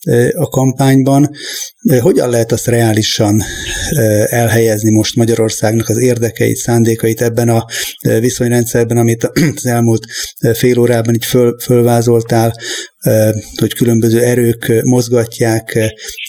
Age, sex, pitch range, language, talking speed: 30-49, male, 115-125 Hz, Hungarian, 95 wpm